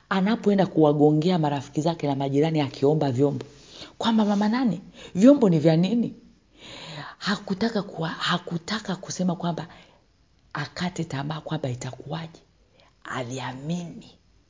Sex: female